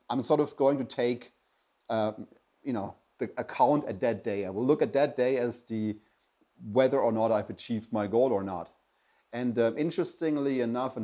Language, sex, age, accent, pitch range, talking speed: English, male, 30-49, German, 105-125 Hz, 195 wpm